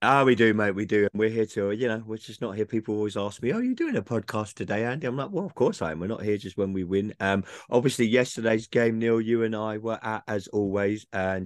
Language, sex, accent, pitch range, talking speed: English, male, British, 90-110 Hz, 290 wpm